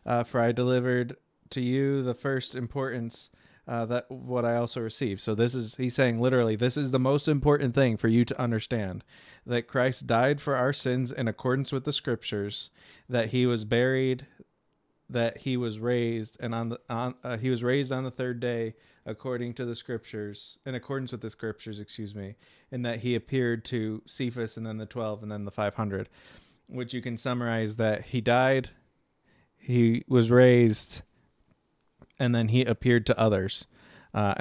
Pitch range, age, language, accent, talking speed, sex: 115-130 Hz, 20-39, English, American, 180 wpm, male